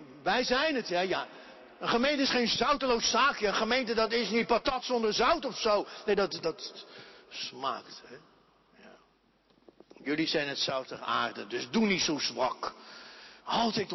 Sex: male